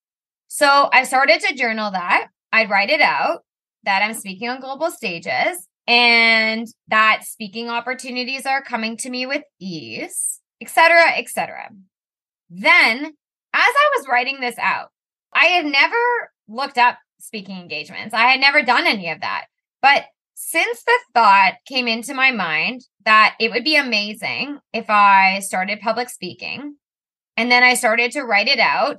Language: English